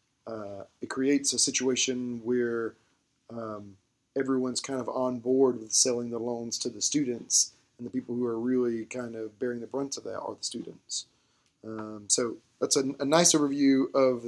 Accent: American